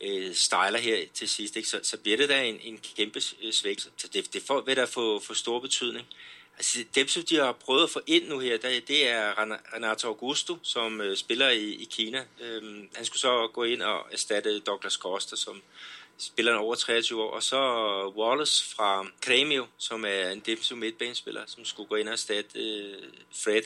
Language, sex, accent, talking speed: Danish, male, native, 200 wpm